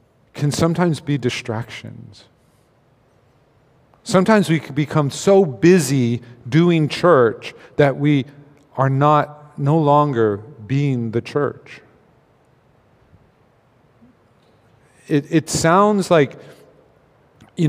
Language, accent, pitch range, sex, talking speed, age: English, American, 125-155 Hz, male, 90 wpm, 40-59